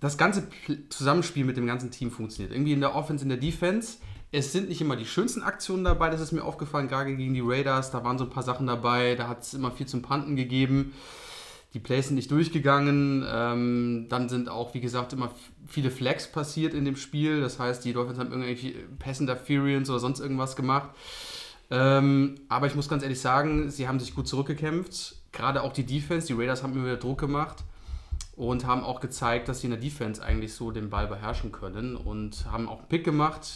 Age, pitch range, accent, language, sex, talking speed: 30-49, 125-150 Hz, German, German, male, 210 wpm